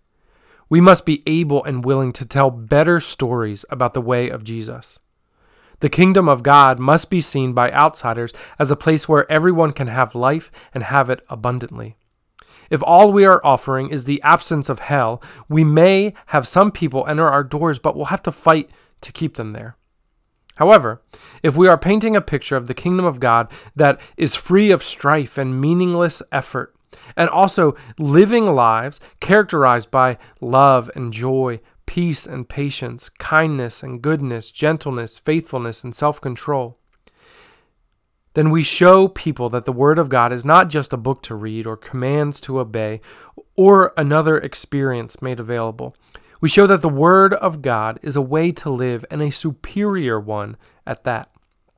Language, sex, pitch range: English, male, 125-160 Hz